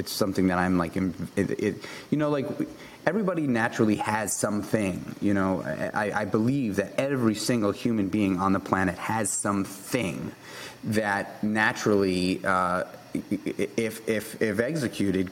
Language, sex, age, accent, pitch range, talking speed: English, male, 30-49, American, 95-110 Hz, 140 wpm